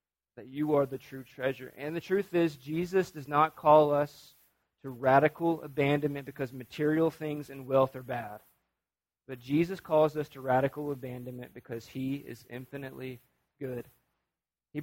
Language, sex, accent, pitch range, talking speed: English, male, American, 125-150 Hz, 155 wpm